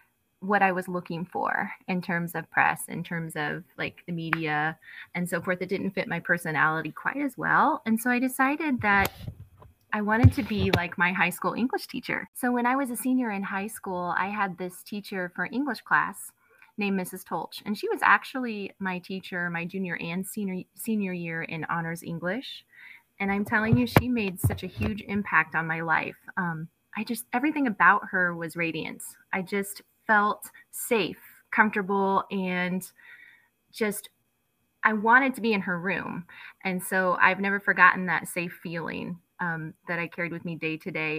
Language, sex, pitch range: English, female, 170-215 Hz